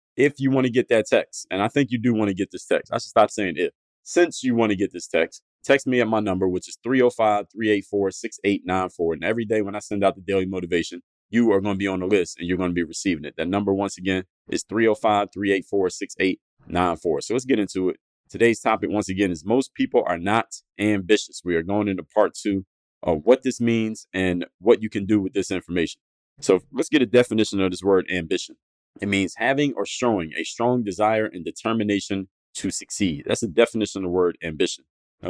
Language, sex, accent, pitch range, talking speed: English, male, American, 95-120 Hz, 220 wpm